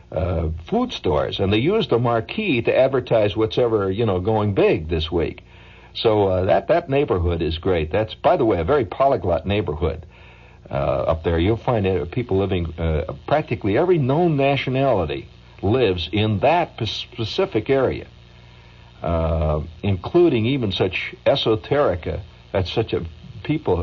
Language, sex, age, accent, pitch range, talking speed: English, male, 60-79, American, 85-120 Hz, 155 wpm